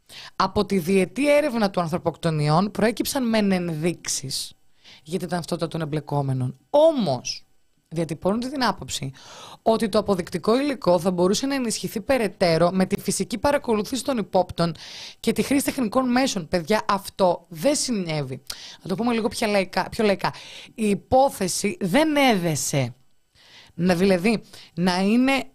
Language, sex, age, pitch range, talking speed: Greek, female, 20-39, 165-230 Hz, 130 wpm